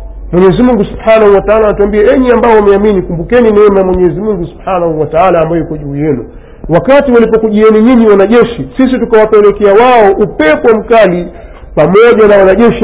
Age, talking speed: 40-59, 145 wpm